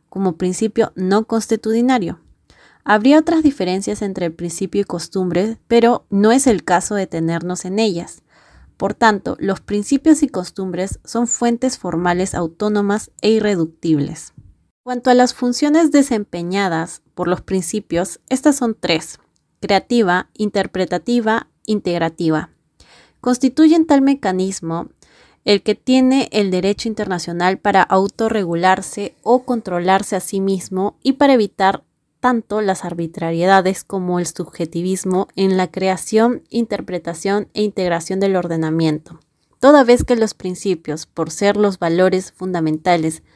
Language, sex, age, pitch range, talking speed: Spanish, female, 30-49, 180-225 Hz, 125 wpm